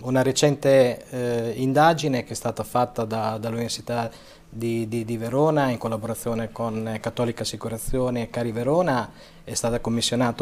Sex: male